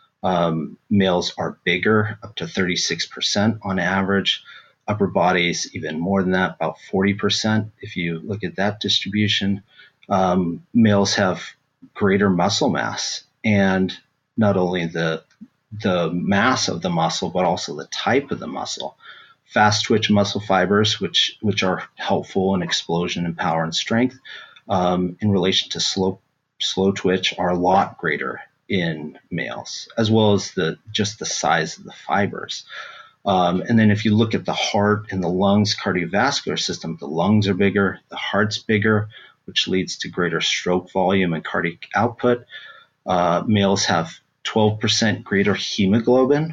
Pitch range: 95-110 Hz